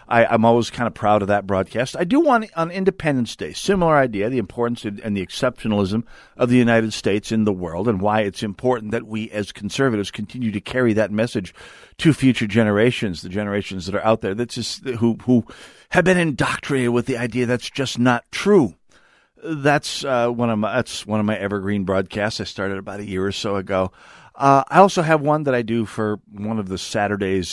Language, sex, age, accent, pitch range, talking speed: English, male, 50-69, American, 100-125 Hz, 210 wpm